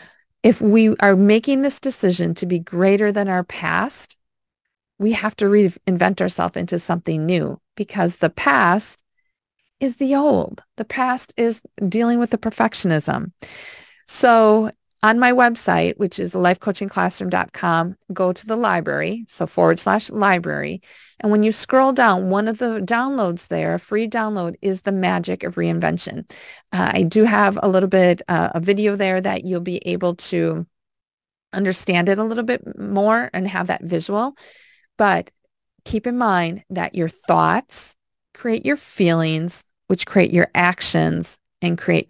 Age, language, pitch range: 40-59, English, 180-225 Hz